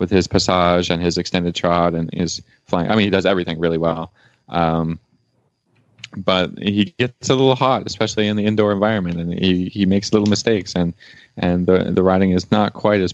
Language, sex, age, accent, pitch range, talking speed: English, male, 20-39, American, 90-110 Hz, 200 wpm